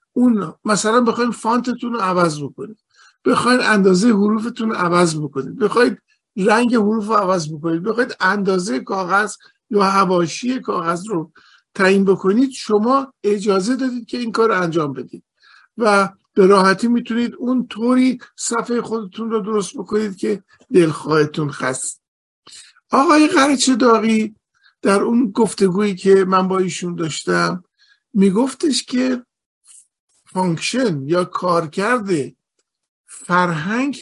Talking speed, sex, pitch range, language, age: 120 wpm, male, 180-240 Hz, Persian, 50-69